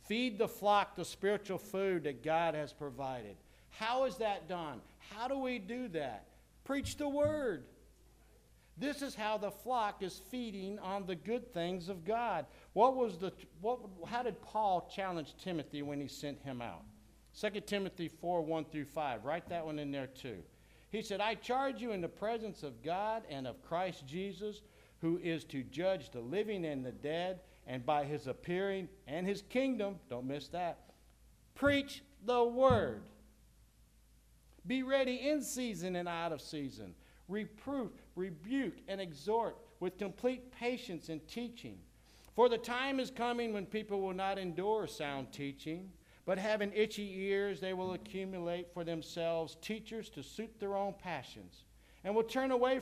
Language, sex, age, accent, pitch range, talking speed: English, male, 60-79, American, 165-225 Hz, 165 wpm